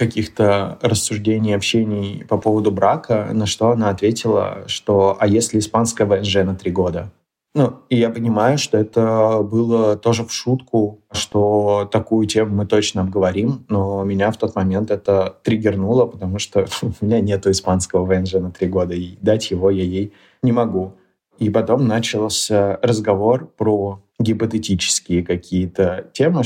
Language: Russian